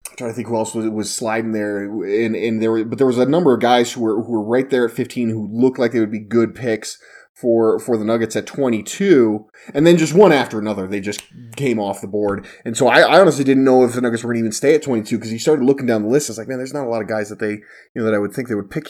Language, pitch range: English, 110-135 Hz